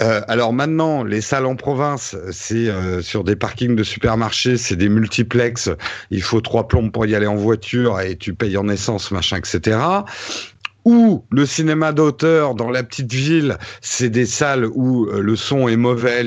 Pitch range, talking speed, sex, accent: 110-145 Hz, 185 wpm, male, French